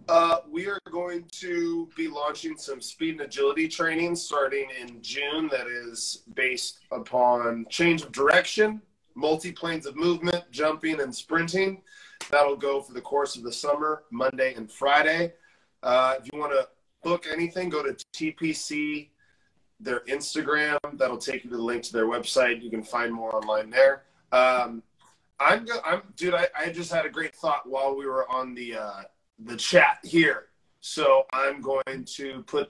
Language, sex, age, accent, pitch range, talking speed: English, male, 20-39, American, 125-170 Hz, 165 wpm